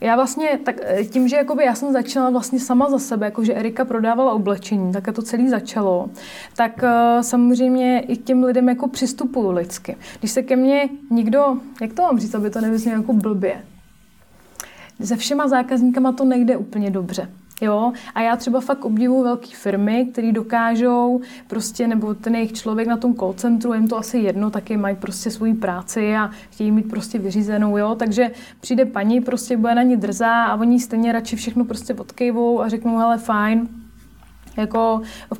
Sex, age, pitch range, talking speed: female, 20-39, 220-245 Hz, 180 wpm